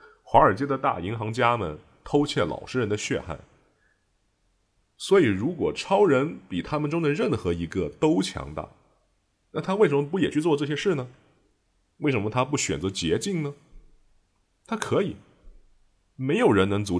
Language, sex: Chinese, male